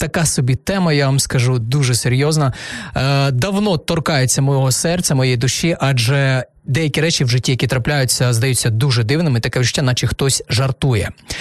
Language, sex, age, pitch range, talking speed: Ukrainian, male, 30-49, 130-170 Hz, 155 wpm